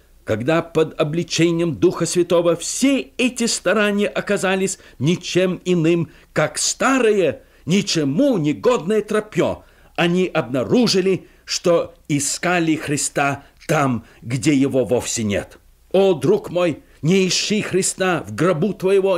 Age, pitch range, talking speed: 50-69, 150-200 Hz, 110 wpm